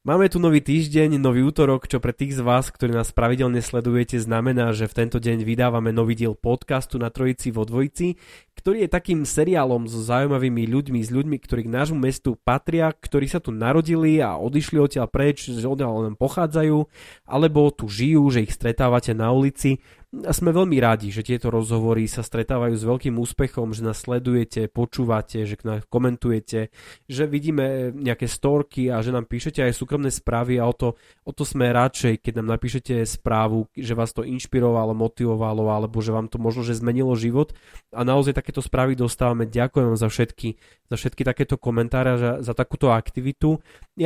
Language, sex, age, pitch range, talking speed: Slovak, male, 20-39, 115-135 Hz, 185 wpm